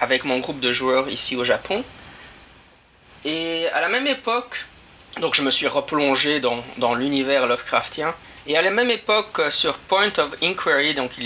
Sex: male